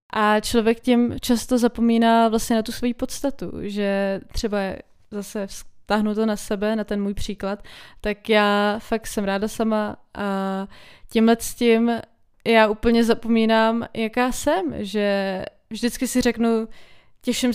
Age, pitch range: 20-39, 200-240 Hz